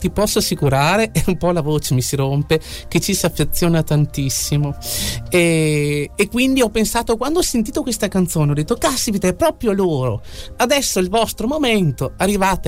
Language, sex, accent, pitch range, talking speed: Italian, male, native, 125-185 Hz, 180 wpm